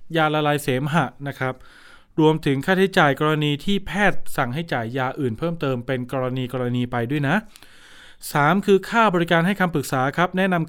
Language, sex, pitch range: Thai, male, 140-175 Hz